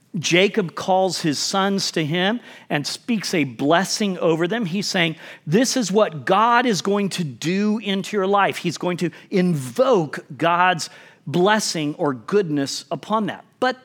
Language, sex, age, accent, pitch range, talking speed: English, male, 40-59, American, 160-220 Hz, 155 wpm